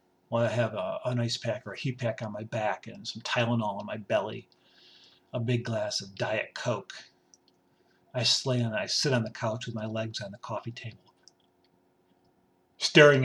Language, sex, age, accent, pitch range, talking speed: English, male, 50-69, American, 110-140 Hz, 185 wpm